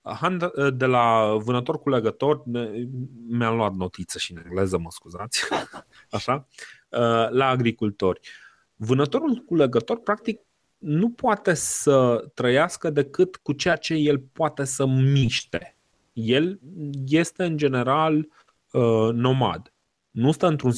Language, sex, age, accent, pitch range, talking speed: Romanian, male, 30-49, native, 120-170 Hz, 120 wpm